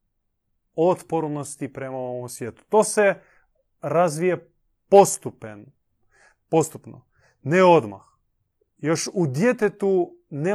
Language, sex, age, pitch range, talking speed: Croatian, male, 30-49, 110-155 Hz, 80 wpm